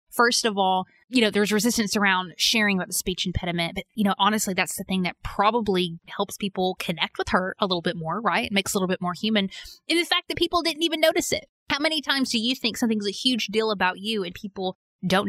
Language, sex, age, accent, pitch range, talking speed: English, female, 20-39, American, 185-220 Hz, 250 wpm